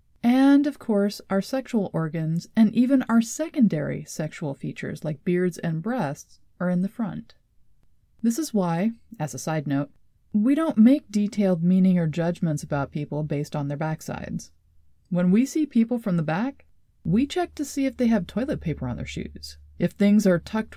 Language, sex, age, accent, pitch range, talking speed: English, female, 30-49, American, 165-230 Hz, 180 wpm